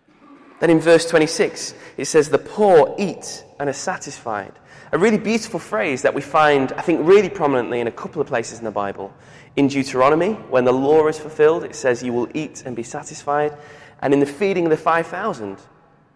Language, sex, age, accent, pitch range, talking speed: English, male, 20-39, British, 135-205 Hz, 195 wpm